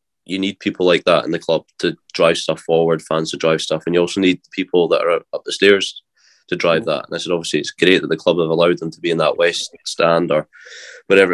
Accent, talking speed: British, 260 wpm